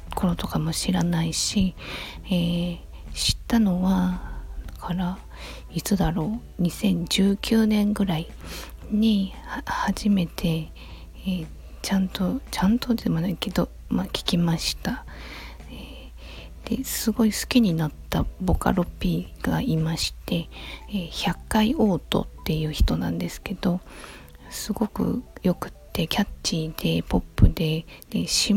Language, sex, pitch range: Japanese, female, 165-210 Hz